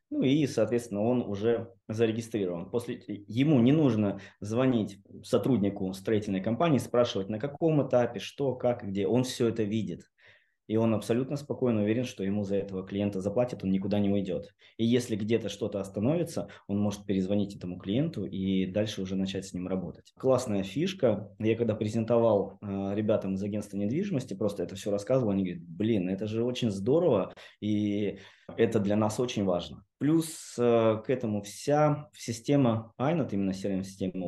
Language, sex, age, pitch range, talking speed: Russian, male, 20-39, 100-125 Hz, 160 wpm